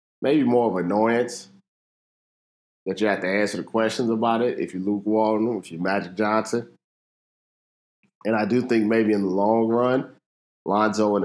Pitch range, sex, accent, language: 90-110 Hz, male, American, English